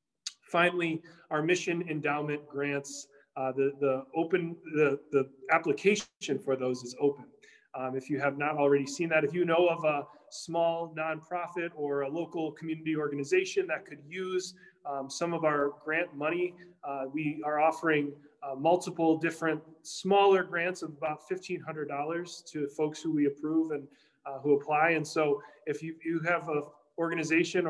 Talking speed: 155 wpm